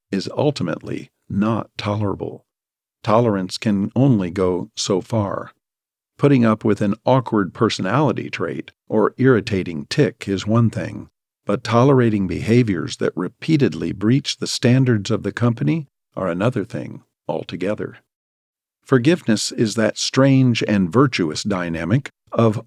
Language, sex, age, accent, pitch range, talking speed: English, male, 50-69, American, 100-120 Hz, 120 wpm